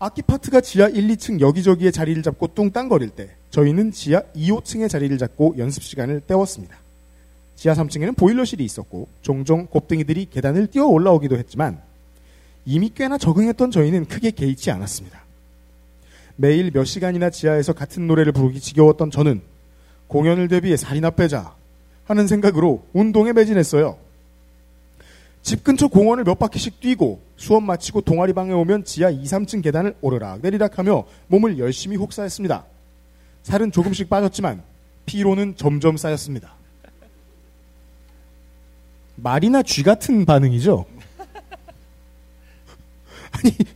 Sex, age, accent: male, 40-59, native